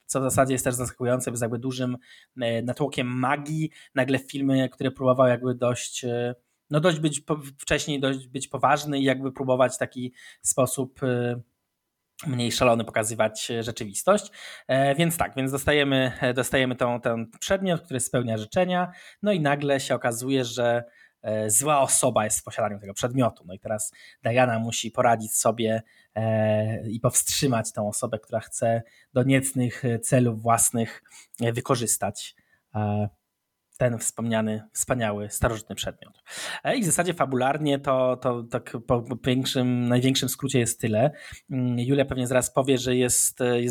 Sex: male